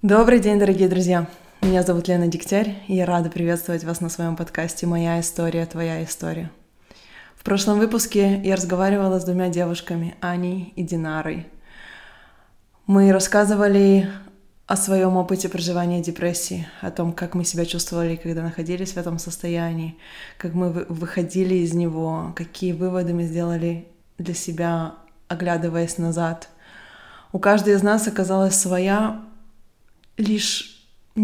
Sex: female